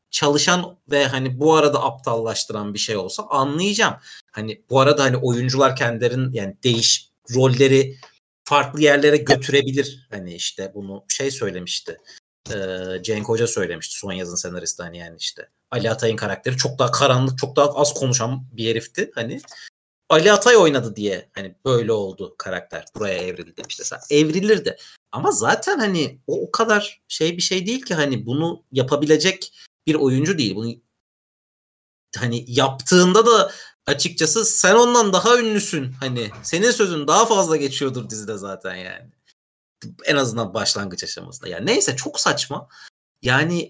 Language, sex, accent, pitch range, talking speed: Turkish, male, native, 115-170 Hz, 145 wpm